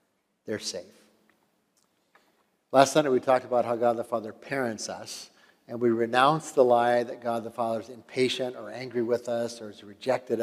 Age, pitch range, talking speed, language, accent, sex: 50-69, 115-140 Hz, 180 wpm, English, American, male